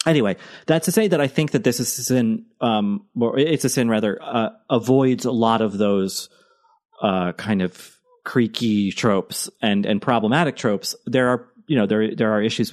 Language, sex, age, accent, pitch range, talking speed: English, male, 30-49, American, 105-135 Hz, 190 wpm